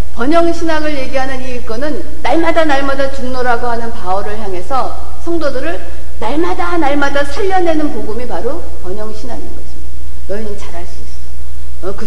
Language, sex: Korean, female